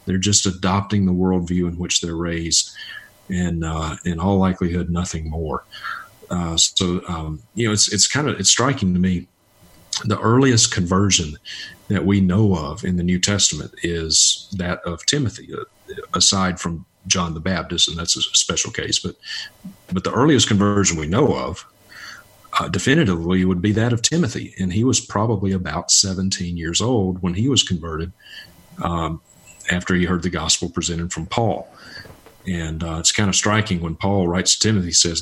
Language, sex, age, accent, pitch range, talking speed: English, male, 40-59, American, 85-110 Hz, 175 wpm